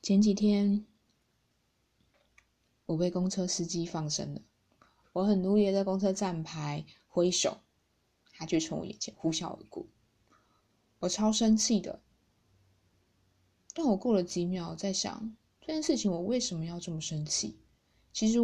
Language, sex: Chinese, female